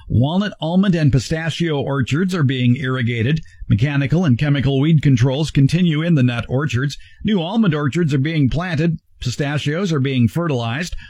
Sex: male